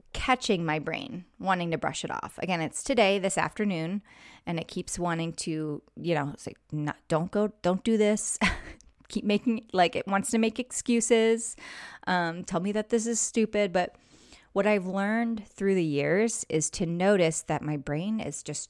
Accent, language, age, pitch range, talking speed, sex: American, English, 20-39, 160-215 Hz, 185 wpm, female